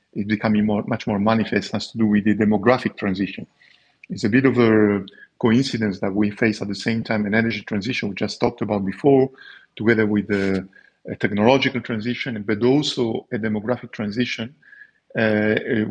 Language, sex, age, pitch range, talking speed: English, male, 50-69, 105-120 Hz, 175 wpm